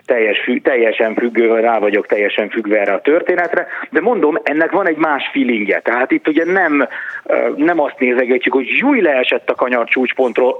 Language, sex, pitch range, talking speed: Hungarian, male, 115-170 Hz, 170 wpm